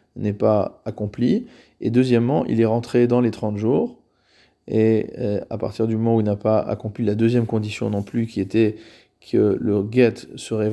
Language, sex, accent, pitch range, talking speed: French, male, French, 110-130 Hz, 185 wpm